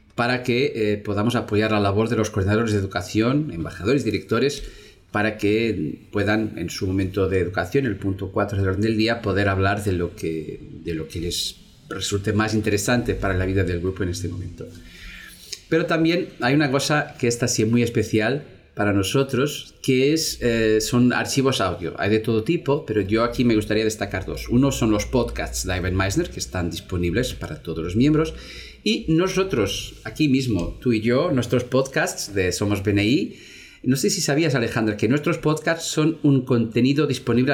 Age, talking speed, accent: 30-49, 185 wpm, Spanish